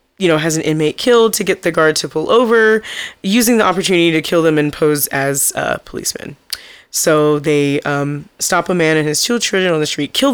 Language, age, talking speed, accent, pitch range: English, 30-49, 220 wpm, American, 150-175 Hz